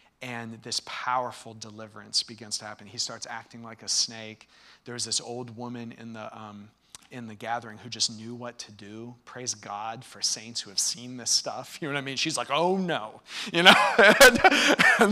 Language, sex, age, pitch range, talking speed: English, male, 30-49, 120-150 Hz, 200 wpm